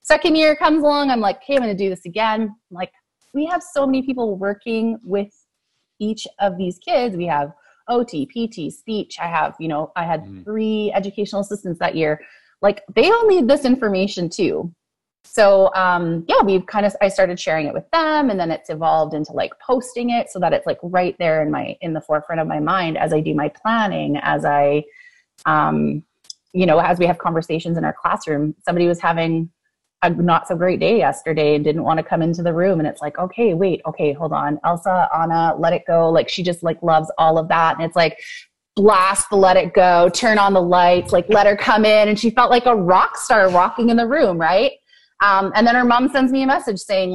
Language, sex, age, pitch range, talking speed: English, female, 30-49, 165-220 Hz, 225 wpm